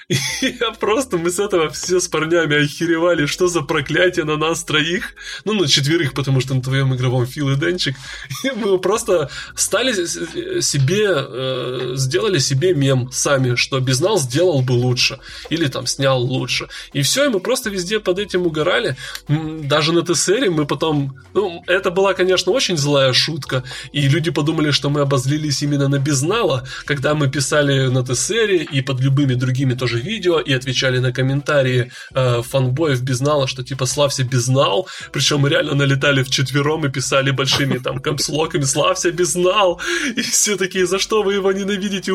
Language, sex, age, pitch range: Russian, male, 20-39, 135-180 Hz